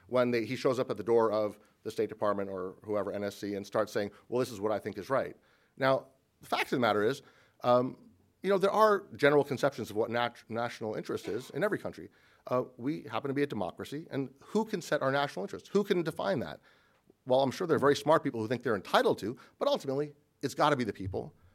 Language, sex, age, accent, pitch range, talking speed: English, male, 40-59, American, 115-155 Hz, 240 wpm